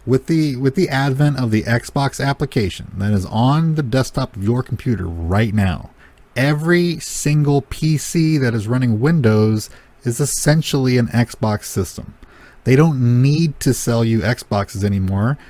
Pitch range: 105-135 Hz